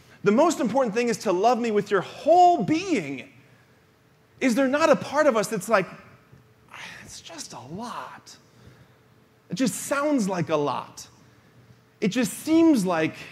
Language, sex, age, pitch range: English, male, 30-49, 180-255 Hz